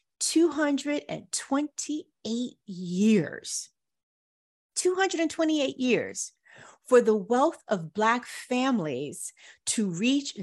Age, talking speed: 40-59, 70 wpm